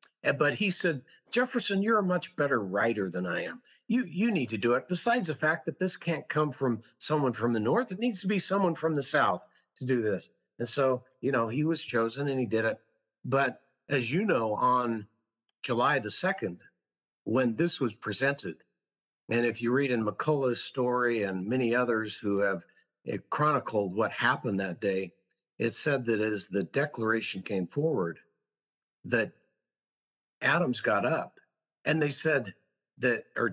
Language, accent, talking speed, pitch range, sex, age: English, American, 175 wpm, 120-180 Hz, male, 50-69